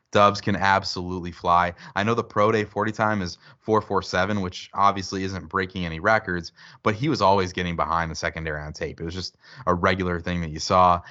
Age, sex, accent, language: 20-39, male, American, English